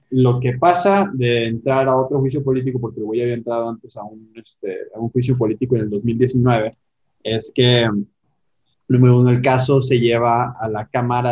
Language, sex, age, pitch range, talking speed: Spanish, male, 20-39, 110-130 Hz, 195 wpm